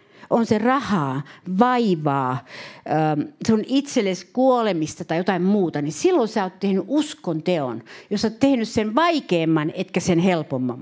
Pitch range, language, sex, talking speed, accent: 175-235 Hz, Finnish, female, 140 wpm, native